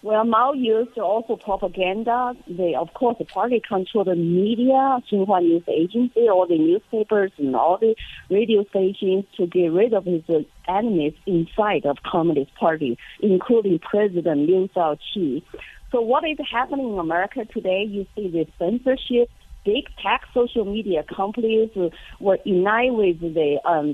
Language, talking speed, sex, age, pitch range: English, 150 wpm, female, 40-59, 190-270 Hz